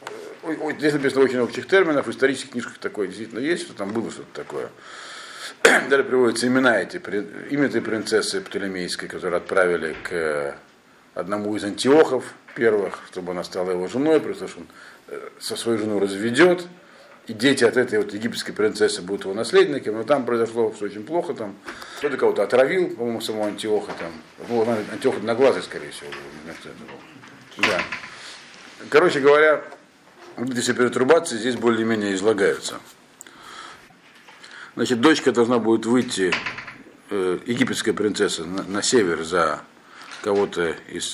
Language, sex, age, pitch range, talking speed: Russian, male, 50-69, 110-145 Hz, 140 wpm